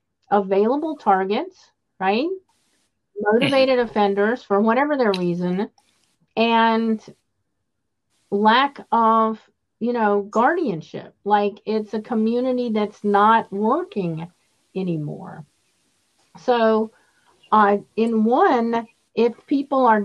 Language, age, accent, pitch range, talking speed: English, 50-69, American, 190-230 Hz, 90 wpm